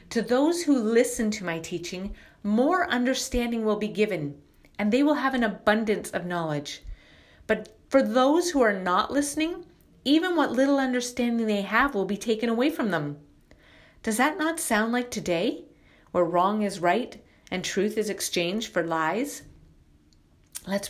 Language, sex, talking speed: English, female, 160 wpm